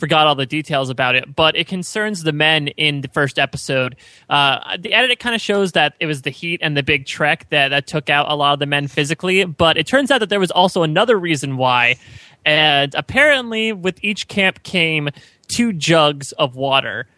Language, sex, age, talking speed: English, male, 20-39, 215 wpm